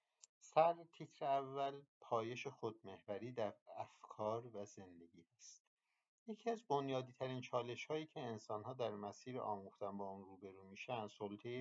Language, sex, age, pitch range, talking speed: Persian, male, 50-69, 100-120 Hz, 140 wpm